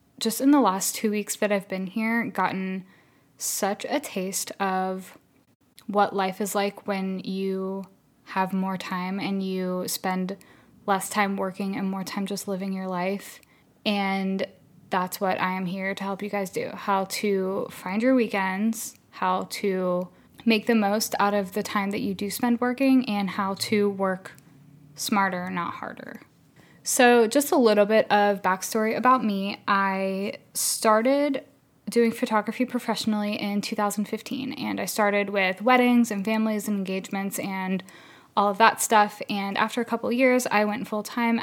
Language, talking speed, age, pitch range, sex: English, 165 wpm, 10-29, 190-220 Hz, female